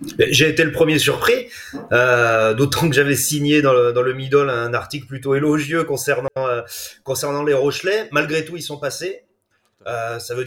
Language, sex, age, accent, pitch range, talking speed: French, male, 30-49, French, 125-160 Hz, 185 wpm